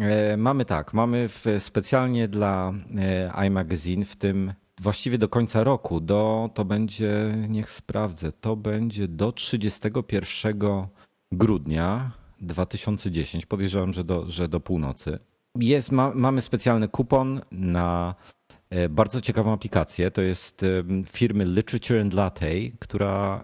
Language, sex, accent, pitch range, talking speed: Polish, male, native, 85-105 Hz, 125 wpm